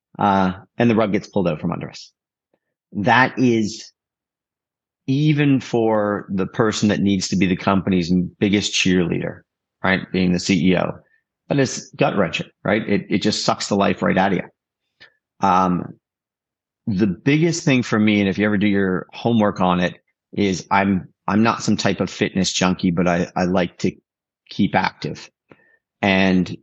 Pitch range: 95-110 Hz